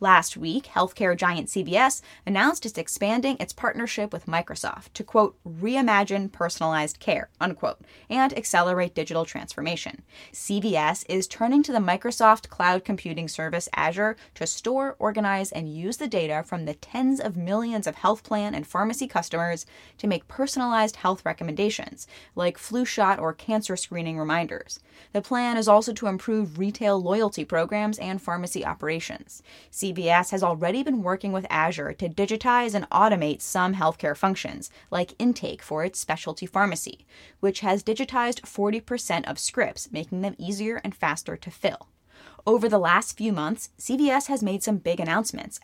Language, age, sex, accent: English, 10-29, female, American